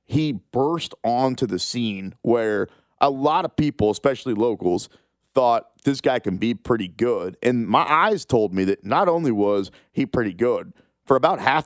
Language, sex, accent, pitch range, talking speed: English, male, American, 100-150 Hz, 175 wpm